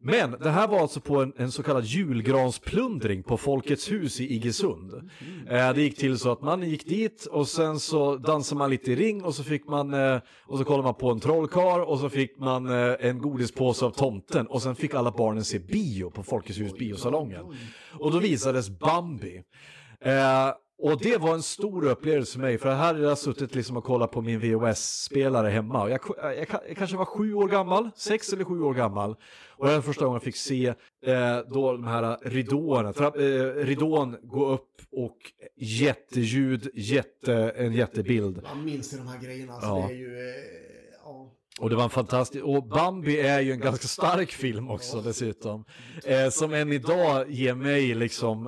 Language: Swedish